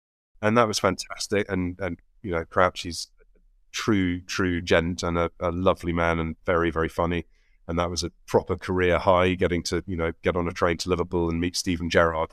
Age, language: 30-49, English